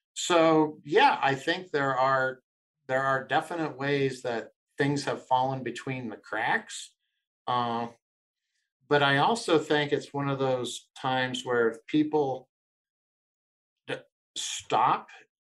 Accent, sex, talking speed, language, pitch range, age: American, male, 115 wpm, English, 115-150 Hz, 50-69